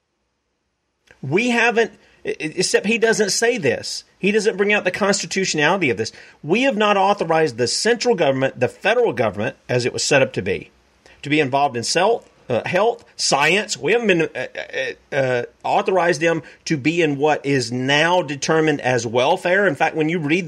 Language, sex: English, male